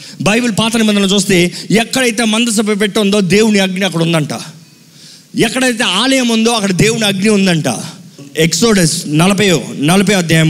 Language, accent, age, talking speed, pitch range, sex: Telugu, native, 30-49, 120 wpm, 190-230 Hz, male